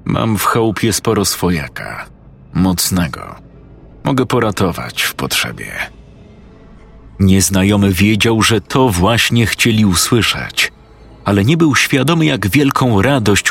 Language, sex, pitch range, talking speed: Polish, male, 95-115 Hz, 105 wpm